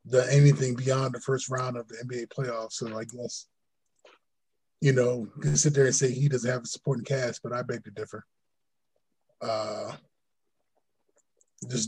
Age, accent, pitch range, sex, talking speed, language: 20-39, American, 125-145 Hz, male, 170 wpm, English